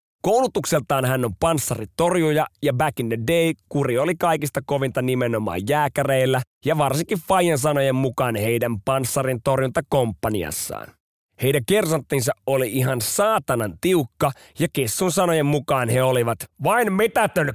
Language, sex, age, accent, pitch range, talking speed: Finnish, male, 30-49, native, 125-175 Hz, 125 wpm